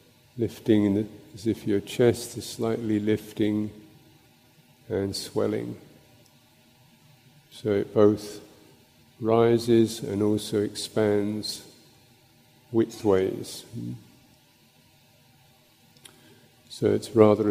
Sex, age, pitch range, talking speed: male, 50-69, 105-120 Hz, 70 wpm